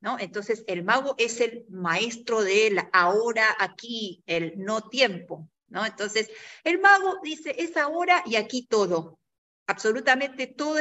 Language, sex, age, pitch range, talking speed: Spanish, female, 50-69, 205-275 Hz, 140 wpm